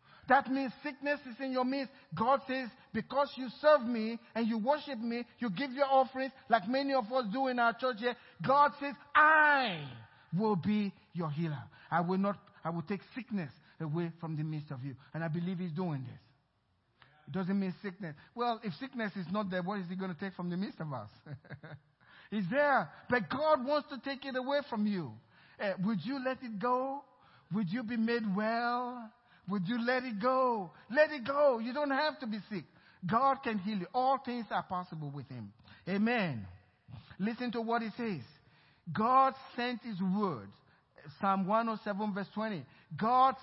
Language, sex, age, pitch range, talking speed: English, male, 50-69, 175-260 Hz, 190 wpm